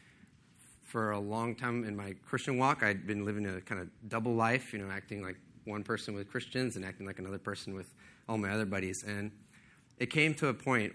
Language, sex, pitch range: English, male, 95-115 Hz